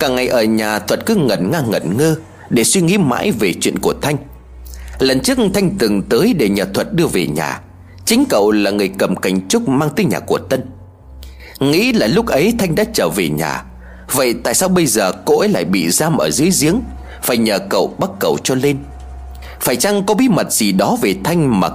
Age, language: 30-49, Vietnamese